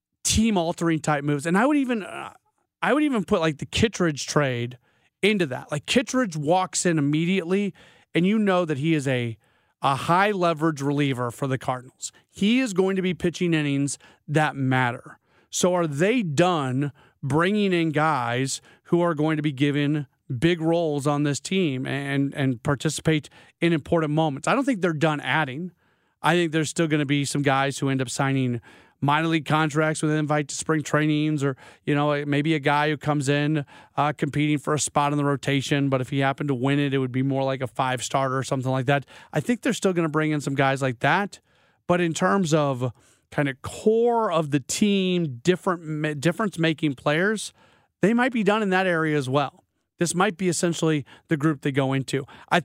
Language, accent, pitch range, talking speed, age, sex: English, American, 140-175 Hz, 205 wpm, 30-49, male